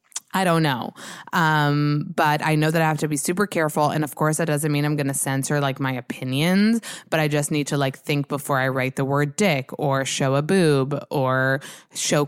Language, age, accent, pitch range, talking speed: English, 20-39, American, 140-170 Hz, 225 wpm